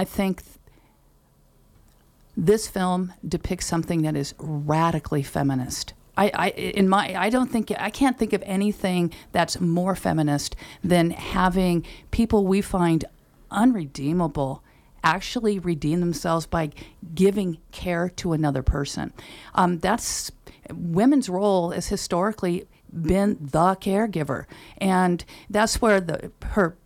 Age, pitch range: 50-69, 165-205 Hz